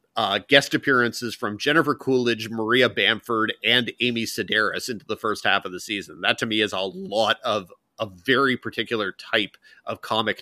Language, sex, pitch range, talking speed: English, male, 105-125 Hz, 180 wpm